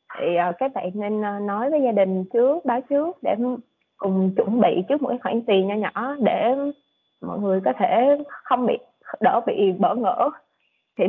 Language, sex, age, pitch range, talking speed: Vietnamese, female, 20-39, 190-260 Hz, 180 wpm